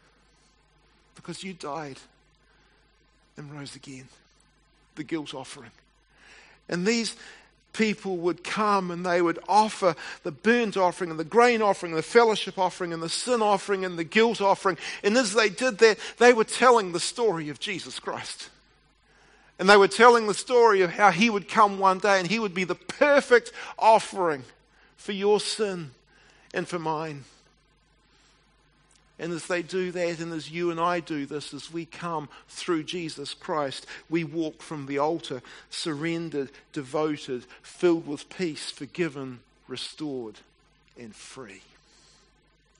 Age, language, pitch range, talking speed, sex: 50-69, English, 155-200 Hz, 150 wpm, male